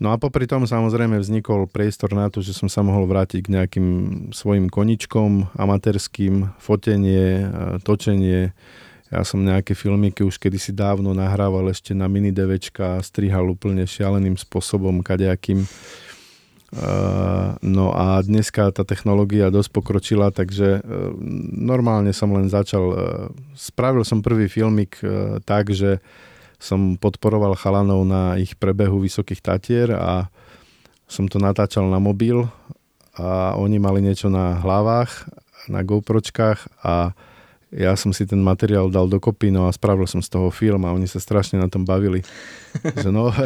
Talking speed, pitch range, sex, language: 140 wpm, 95-110 Hz, male, Slovak